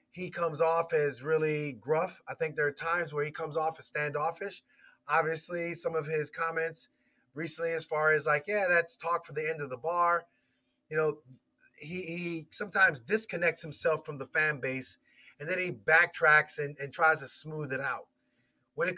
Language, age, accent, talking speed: English, 30-49, American, 190 wpm